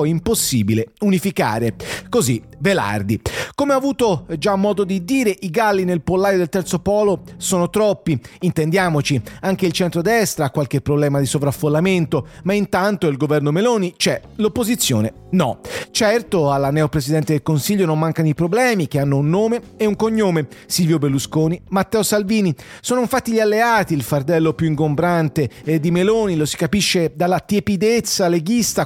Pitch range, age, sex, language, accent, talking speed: 155-200 Hz, 40-59, male, English, Italian, 155 wpm